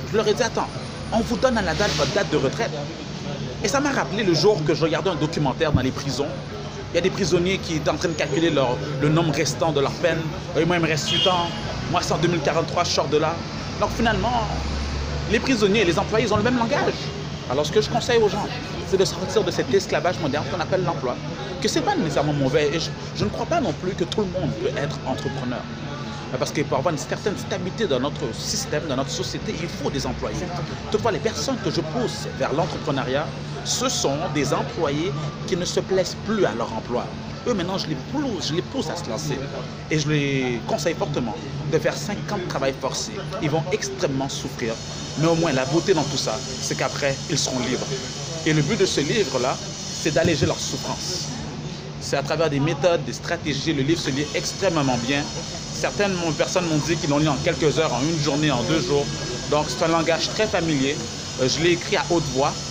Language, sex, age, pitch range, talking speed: French, male, 30-49, 140-175 Hz, 230 wpm